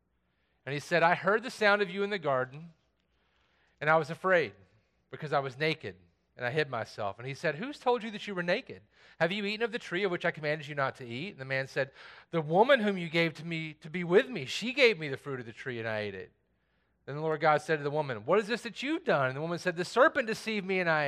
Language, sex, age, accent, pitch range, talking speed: English, male, 30-49, American, 130-170 Hz, 280 wpm